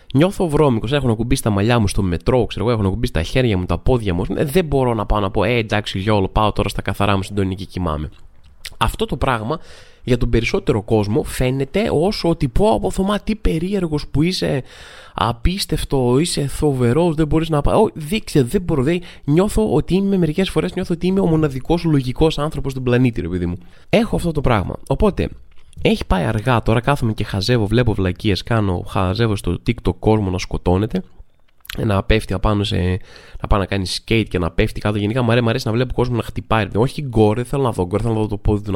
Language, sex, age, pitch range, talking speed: Greek, male, 20-39, 100-145 Hz, 205 wpm